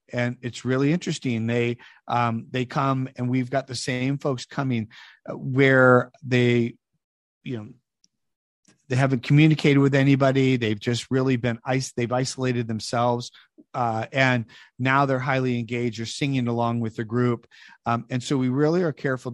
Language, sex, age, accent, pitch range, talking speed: English, male, 40-59, American, 115-135 Hz, 160 wpm